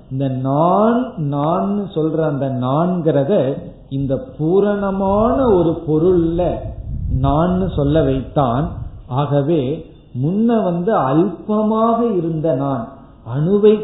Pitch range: 130-170 Hz